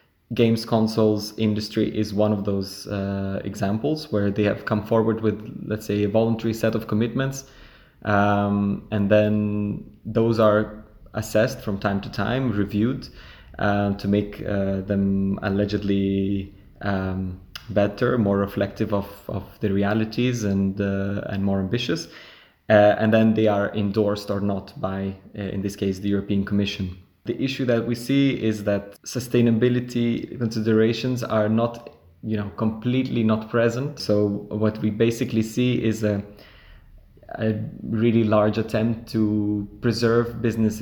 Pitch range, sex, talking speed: 100-110 Hz, male, 145 wpm